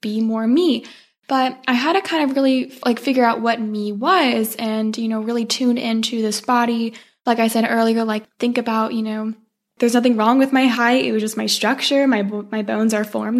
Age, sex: 10-29, female